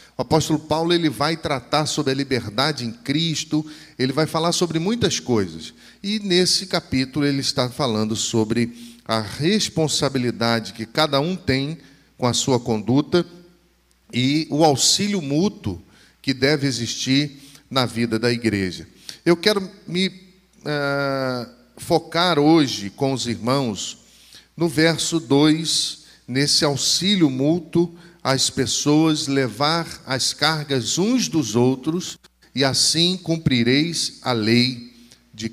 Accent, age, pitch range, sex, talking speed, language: Brazilian, 40-59, 120-160 Hz, male, 125 wpm, Portuguese